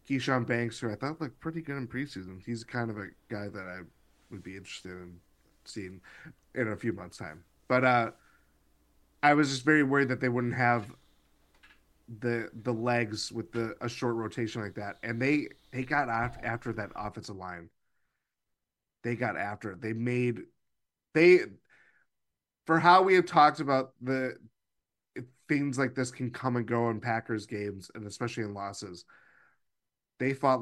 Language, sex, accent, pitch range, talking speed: English, male, American, 110-135 Hz, 175 wpm